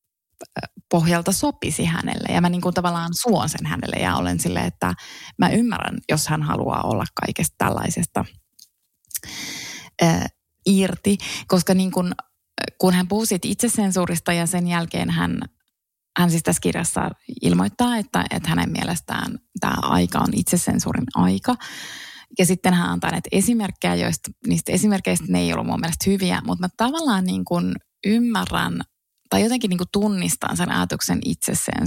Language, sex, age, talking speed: Finnish, female, 20-39, 145 wpm